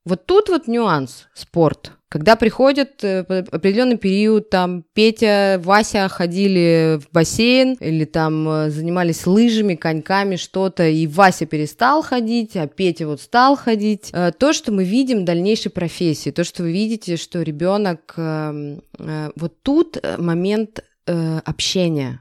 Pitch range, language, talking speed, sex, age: 160-210 Hz, Russian, 125 wpm, female, 20-39